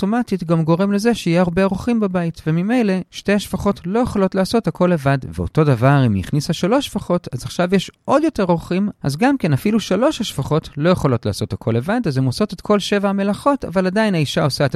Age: 40-59